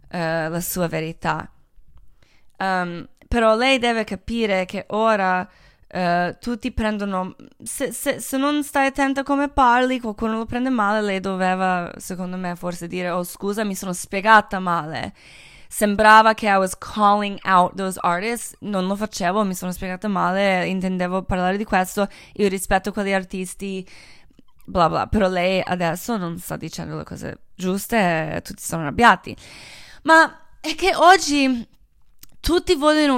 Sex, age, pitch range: female, 20-39, 185-260 Hz